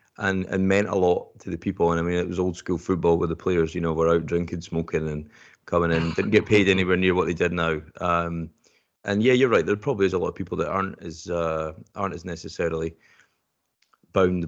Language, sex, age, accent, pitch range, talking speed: English, male, 30-49, British, 80-95 Hz, 235 wpm